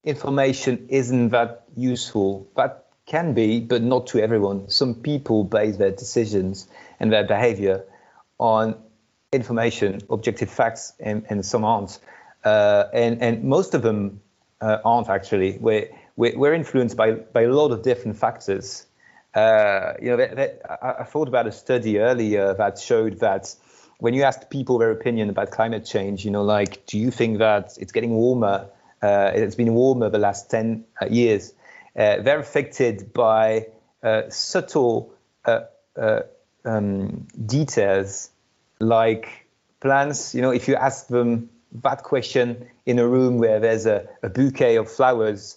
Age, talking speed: 30-49, 155 wpm